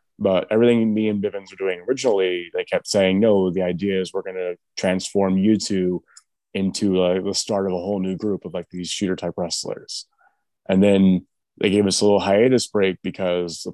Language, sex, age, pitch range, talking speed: English, male, 20-39, 90-100 Hz, 205 wpm